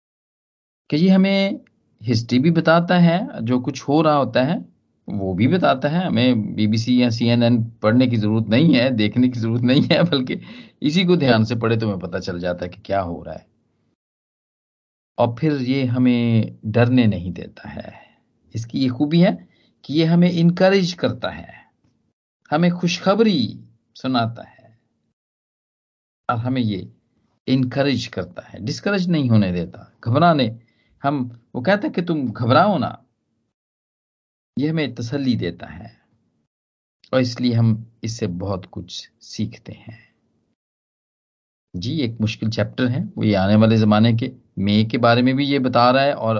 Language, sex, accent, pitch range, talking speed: Hindi, male, native, 110-145 Hz, 160 wpm